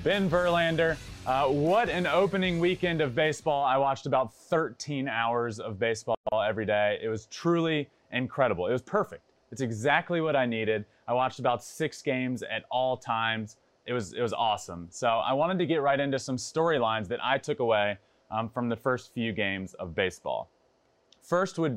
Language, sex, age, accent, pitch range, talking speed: English, male, 20-39, American, 115-160 Hz, 180 wpm